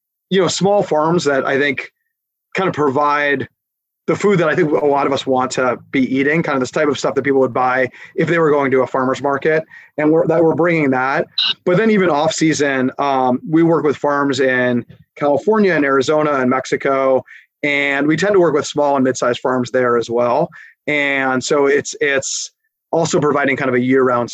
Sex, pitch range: male, 130-160 Hz